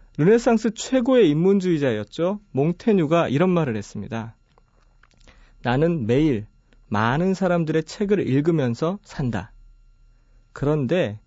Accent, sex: native, male